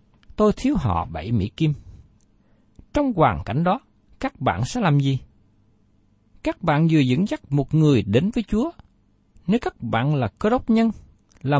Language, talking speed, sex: Vietnamese, 170 wpm, male